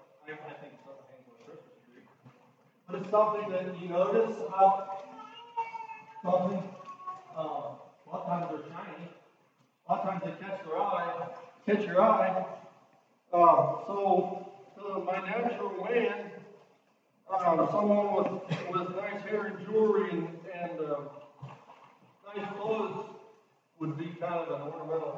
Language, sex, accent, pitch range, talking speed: English, male, American, 165-215 Hz, 125 wpm